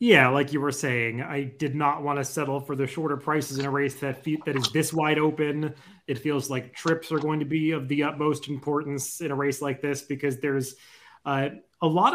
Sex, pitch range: male, 135-165 Hz